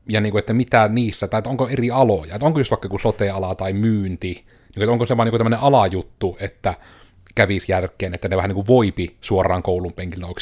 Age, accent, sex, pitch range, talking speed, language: 30-49, native, male, 95-115 Hz, 220 wpm, Finnish